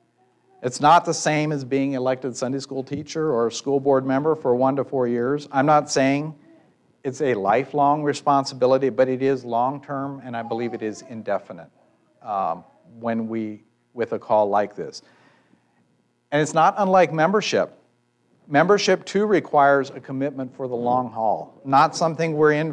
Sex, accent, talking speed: male, American, 165 wpm